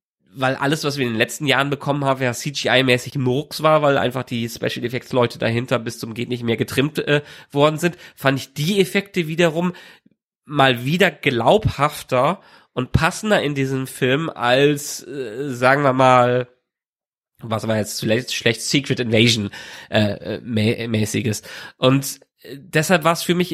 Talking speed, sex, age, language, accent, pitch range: 155 wpm, male, 30-49, German, German, 125-165 Hz